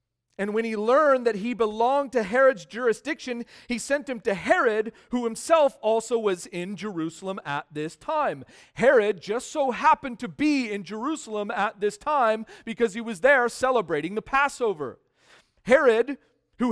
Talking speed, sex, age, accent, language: 160 wpm, male, 40-59, American, English